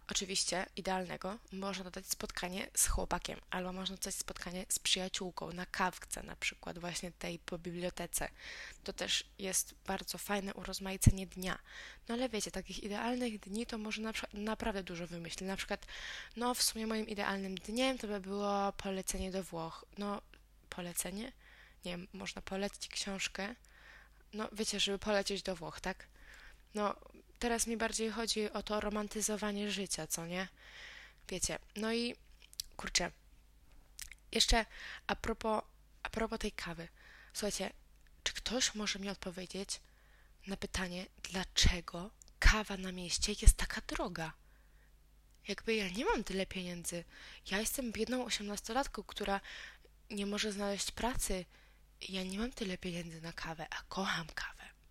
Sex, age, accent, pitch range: female, 20-39, native, 180-215 Hz